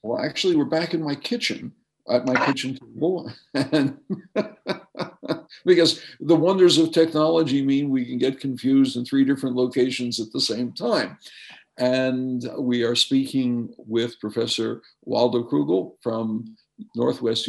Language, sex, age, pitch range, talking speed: English, male, 60-79, 115-150 Hz, 135 wpm